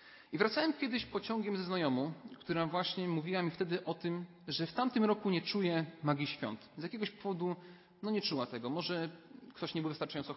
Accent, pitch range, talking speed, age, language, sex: native, 155-205 Hz, 190 wpm, 40-59, Polish, male